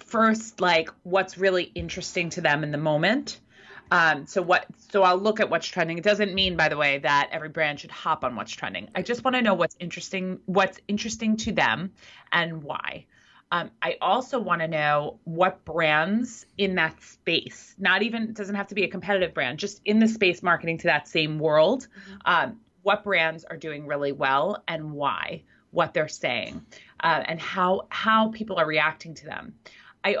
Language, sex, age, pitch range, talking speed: English, female, 30-49, 160-205 Hz, 195 wpm